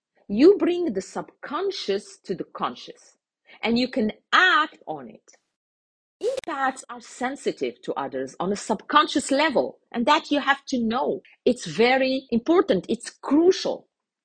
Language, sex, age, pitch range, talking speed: English, female, 40-59, 180-275 Hz, 140 wpm